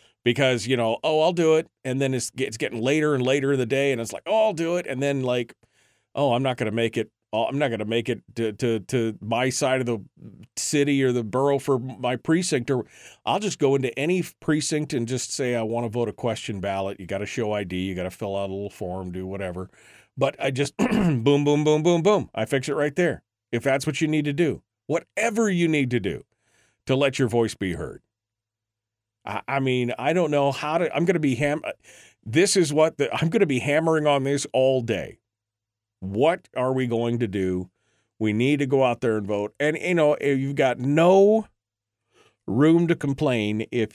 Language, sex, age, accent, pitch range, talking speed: English, male, 40-59, American, 110-145 Hz, 225 wpm